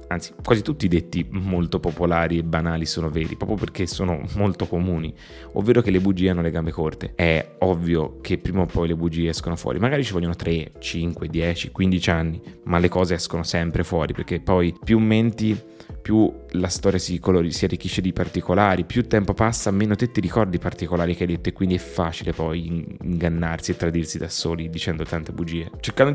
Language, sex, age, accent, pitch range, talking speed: Italian, male, 20-39, native, 85-100 Hz, 200 wpm